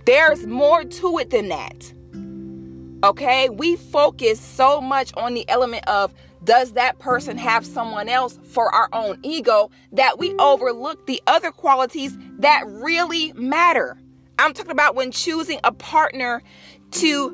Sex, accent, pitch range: female, American, 245-325 Hz